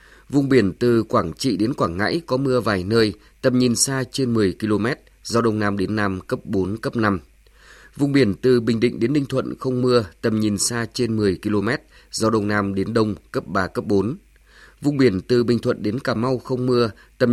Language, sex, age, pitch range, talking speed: Vietnamese, male, 20-39, 105-125 Hz, 220 wpm